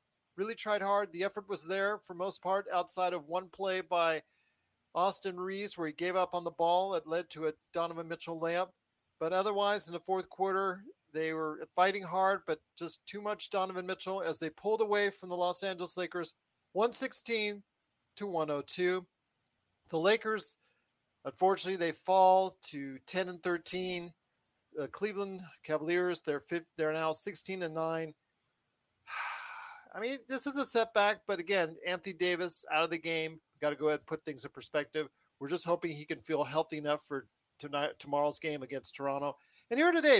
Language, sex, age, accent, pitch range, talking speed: English, male, 40-59, American, 165-205 Hz, 175 wpm